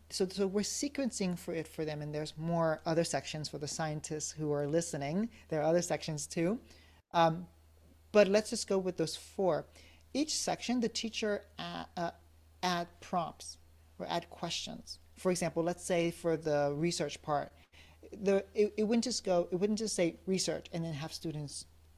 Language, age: English, 40-59